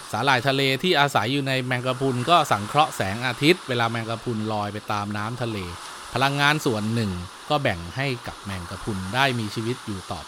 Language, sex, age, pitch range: Thai, male, 20-39, 110-145 Hz